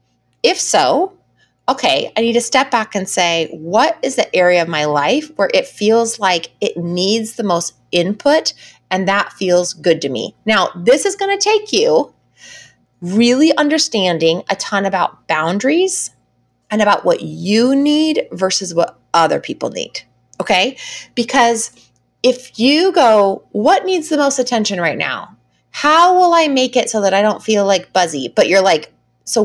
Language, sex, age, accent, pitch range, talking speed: English, female, 30-49, American, 175-260 Hz, 170 wpm